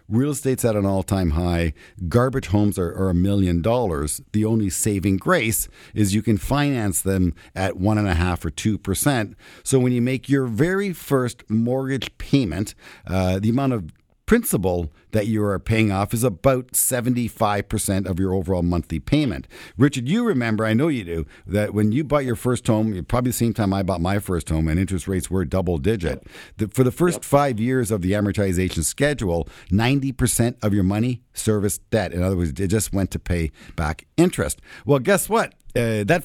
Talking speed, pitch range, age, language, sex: 190 wpm, 95-125 Hz, 50-69, English, male